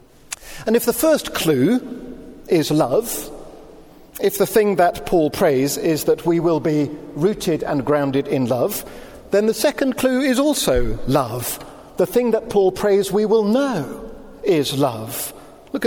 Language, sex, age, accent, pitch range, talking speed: English, male, 50-69, British, 145-230 Hz, 155 wpm